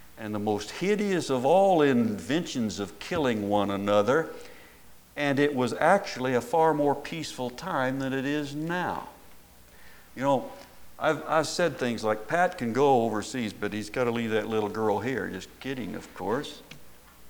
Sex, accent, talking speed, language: male, American, 165 wpm, English